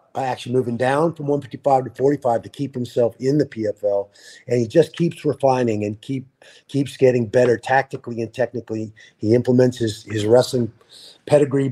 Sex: male